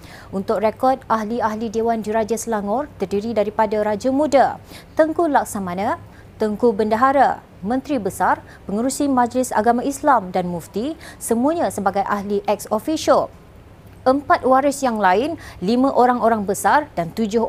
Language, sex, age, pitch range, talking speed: Malay, female, 30-49, 210-255 Hz, 125 wpm